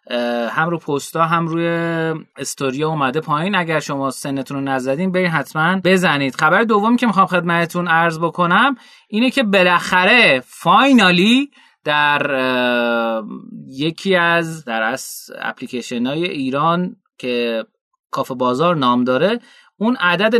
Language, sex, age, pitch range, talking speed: Persian, male, 30-49, 145-190 Hz, 125 wpm